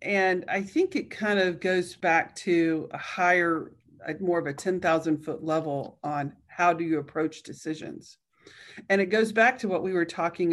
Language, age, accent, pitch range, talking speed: English, 40-59, American, 160-190 Hz, 180 wpm